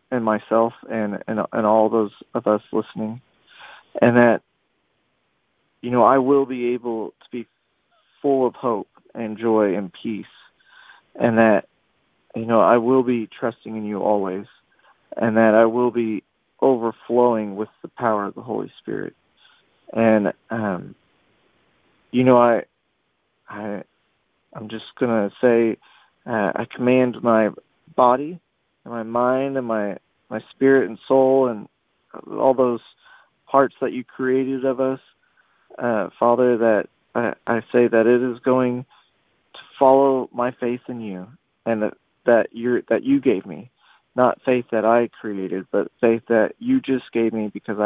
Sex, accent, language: male, American, English